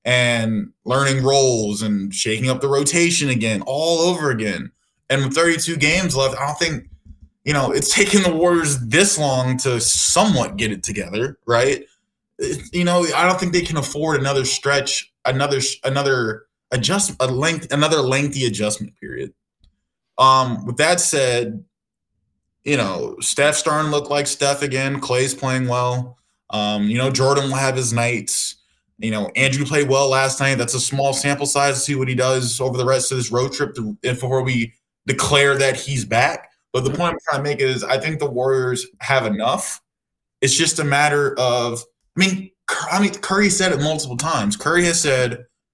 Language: English